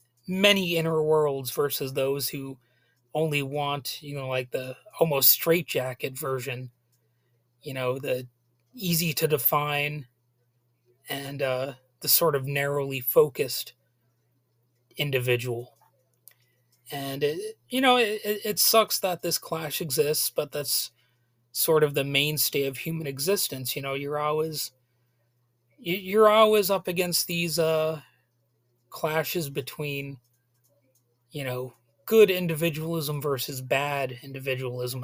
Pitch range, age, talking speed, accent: 125-160 Hz, 30-49, 115 wpm, American